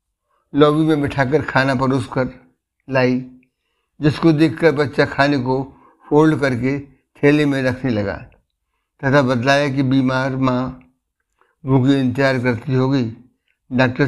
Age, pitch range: 60-79, 125-145 Hz